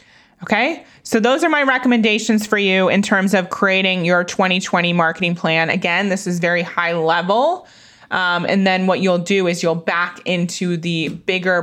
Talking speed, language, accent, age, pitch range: 175 wpm, English, American, 20-39, 175-220 Hz